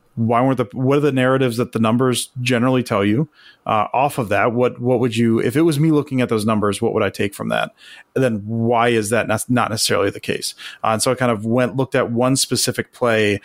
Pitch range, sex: 115-140 Hz, male